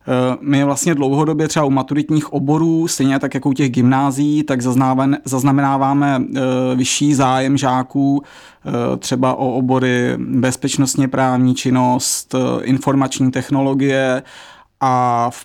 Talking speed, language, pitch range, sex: 110 wpm, Czech, 130-140 Hz, male